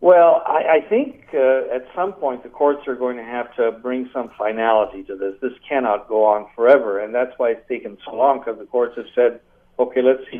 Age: 60-79